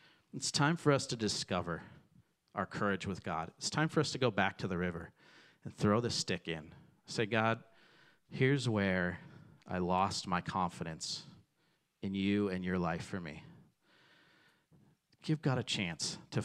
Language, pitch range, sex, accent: English, 100-135 Hz, male, American